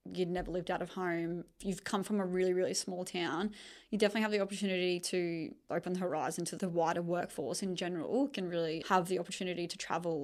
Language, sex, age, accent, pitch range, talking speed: English, female, 20-39, Australian, 175-195 Hz, 215 wpm